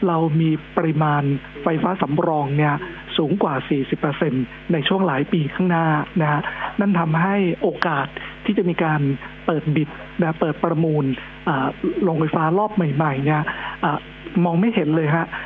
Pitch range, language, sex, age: 155-195 Hz, Thai, male, 60-79